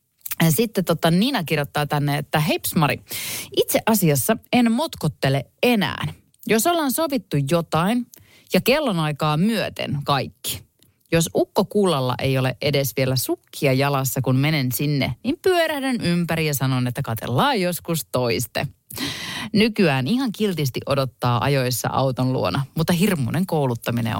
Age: 30-49